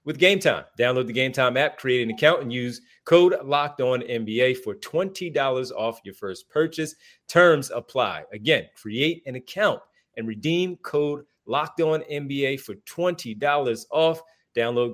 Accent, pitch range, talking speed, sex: American, 110-150 Hz, 165 wpm, male